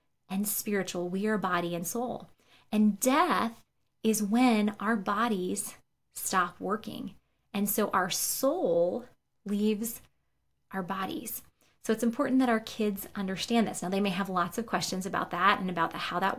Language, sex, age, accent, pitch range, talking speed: English, female, 20-39, American, 185-230 Hz, 160 wpm